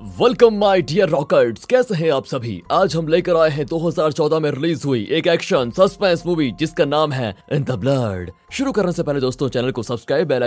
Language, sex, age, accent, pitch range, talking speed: Hindi, male, 20-39, native, 110-155 Hz, 185 wpm